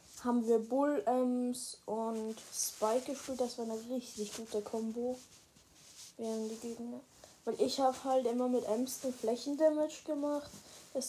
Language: German